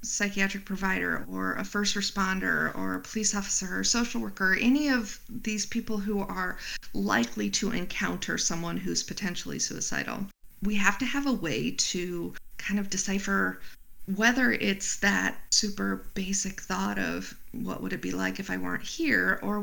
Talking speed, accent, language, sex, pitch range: 160 wpm, American, English, female, 170-215 Hz